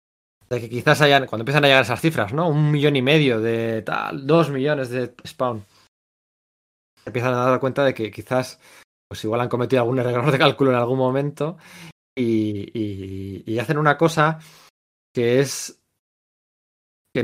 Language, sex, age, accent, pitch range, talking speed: Spanish, male, 20-39, Spanish, 115-145 Hz, 165 wpm